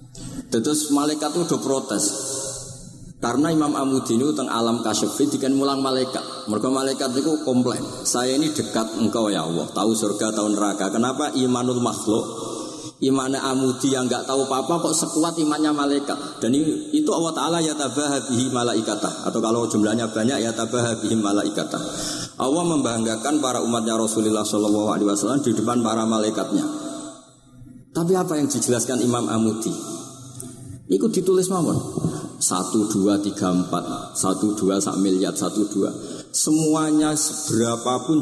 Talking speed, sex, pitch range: 140 wpm, male, 110-145 Hz